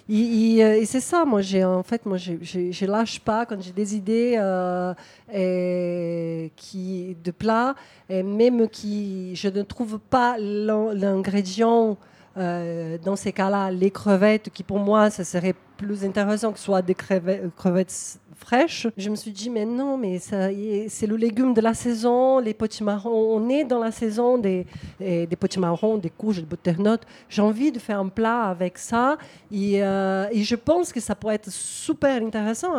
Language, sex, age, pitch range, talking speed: French, female, 40-59, 190-230 Hz, 180 wpm